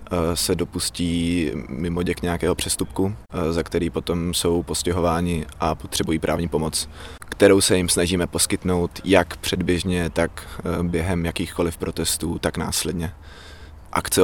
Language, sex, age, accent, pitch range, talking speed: Czech, male, 20-39, native, 80-90 Hz, 120 wpm